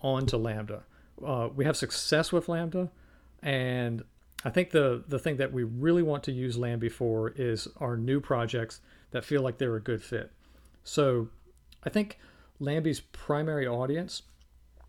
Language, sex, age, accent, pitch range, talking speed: English, male, 40-59, American, 115-135 Hz, 155 wpm